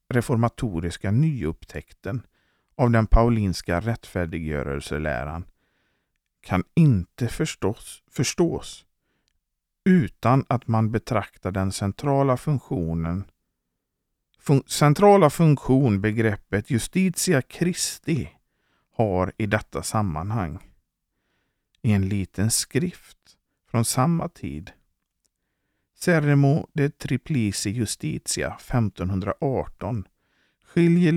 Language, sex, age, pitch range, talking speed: Swedish, male, 50-69, 90-130 Hz, 75 wpm